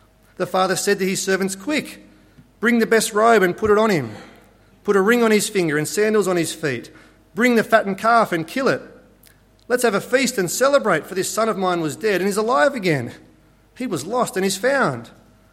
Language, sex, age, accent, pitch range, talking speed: English, male, 40-59, Australian, 130-210 Hz, 220 wpm